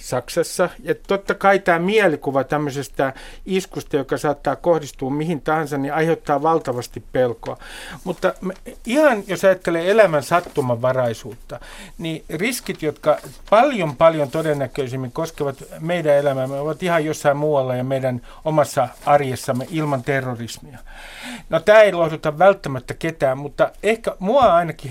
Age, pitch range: 50-69, 130-175 Hz